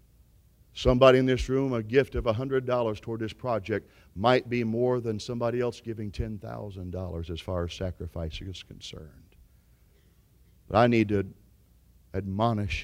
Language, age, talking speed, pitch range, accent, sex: English, 50-69, 140 wpm, 95-120 Hz, American, male